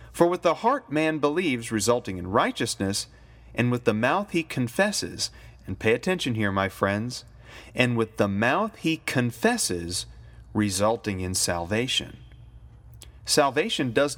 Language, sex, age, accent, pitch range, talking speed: English, male, 30-49, American, 105-150 Hz, 135 wpm